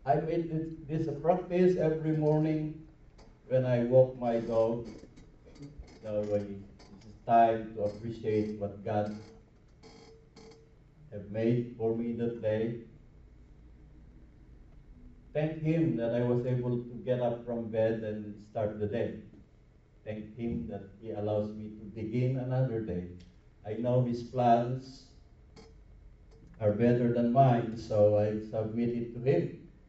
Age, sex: 50-69, male